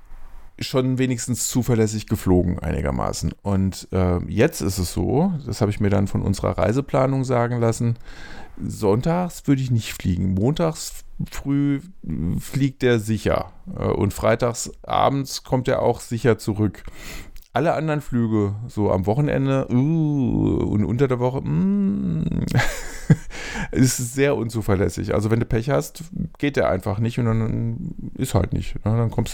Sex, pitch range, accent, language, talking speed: male, 100-130 Hz, German, German, 145 wpm